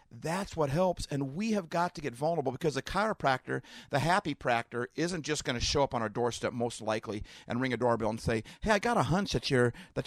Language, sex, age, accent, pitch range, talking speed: English, male, 50-69, American, 115-160 Hz, 245 wpm